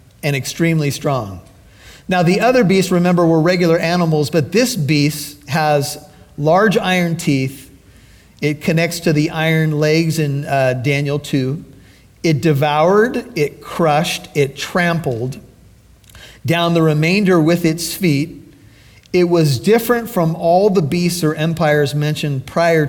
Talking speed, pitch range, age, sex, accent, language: 135 wpm, 140-170 Hz, 40-59, male, American, English